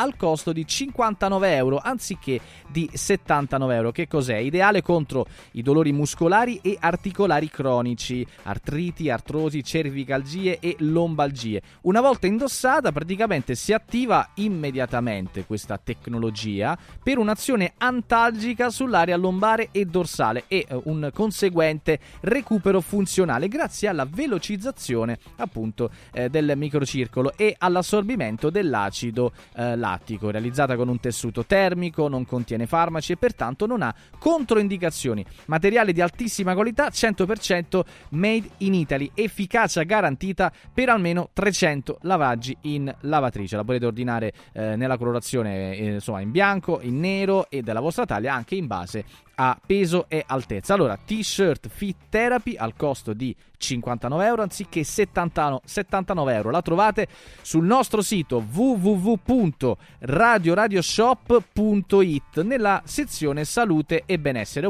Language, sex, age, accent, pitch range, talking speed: Italian, male, 20-39, native, 130-205 Hz, 120 wpm